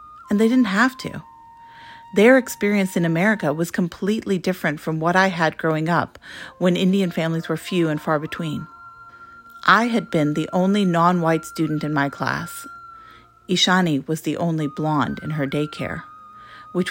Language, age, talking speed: English, 40-59, 160 wpm